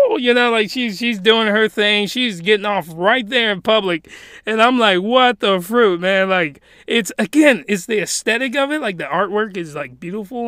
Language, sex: English, male